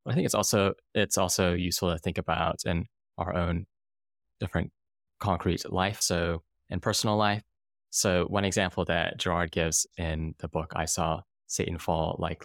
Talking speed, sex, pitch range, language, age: 165 wpm, male, 80-90 Hz, English, 20-39